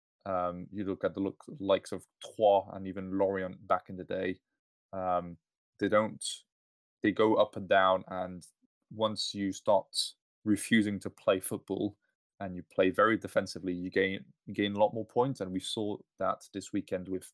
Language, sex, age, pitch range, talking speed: English, male, 20-39, 95-105 Hz, 175 wpm